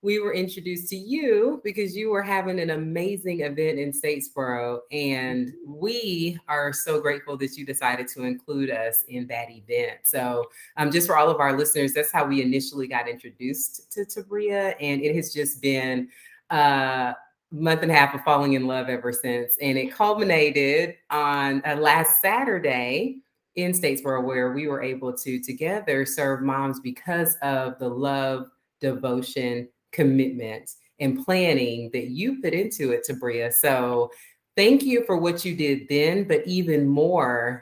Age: 30-49